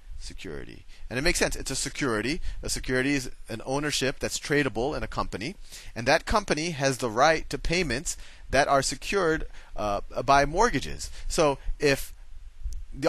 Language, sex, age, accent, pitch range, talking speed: English, male, 30-49, American, 90-135 Hz, 160 wpm